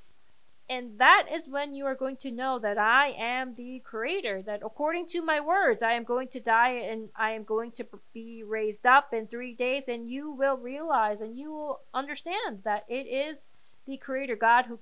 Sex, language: female, English